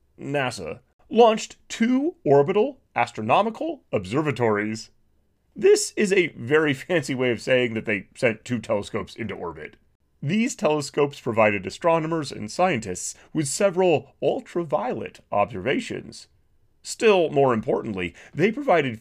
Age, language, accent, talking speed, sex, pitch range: 30-49, English, American, 115 wpm, male, 110-180 Hz